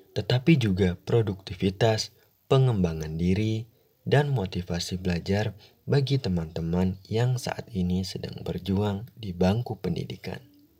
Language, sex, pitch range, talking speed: Indonesian, male, 90-115 Hz, 100 wpm